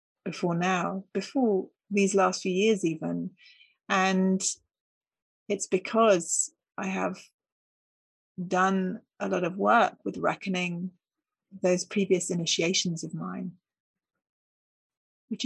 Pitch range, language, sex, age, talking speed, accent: 185-220 Hz, English, female, 40-59, 100 wpm, British